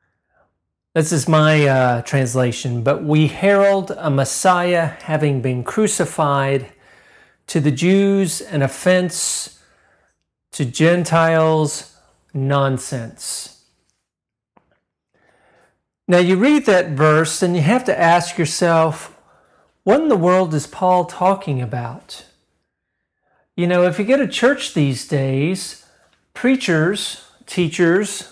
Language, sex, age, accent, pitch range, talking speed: English, male, 40-59, American, 145-190 Hz, 110 wpm